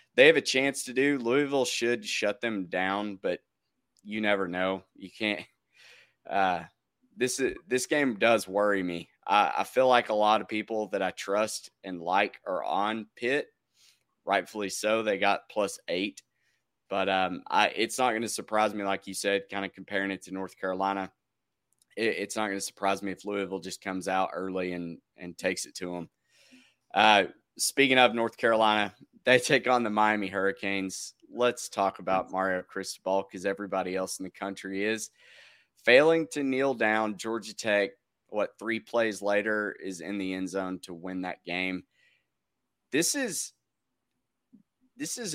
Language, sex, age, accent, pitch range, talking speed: English, male, 20-39, American, 95-115 Hz, 175 wpm